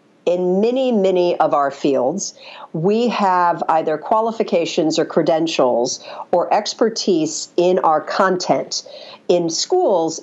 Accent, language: American, English